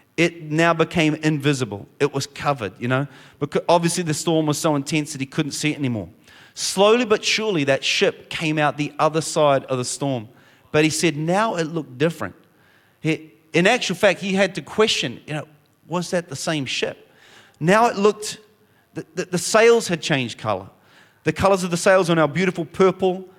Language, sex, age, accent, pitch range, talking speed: English, male, 30-49, Australian, 140-180 Hz, 190 wpm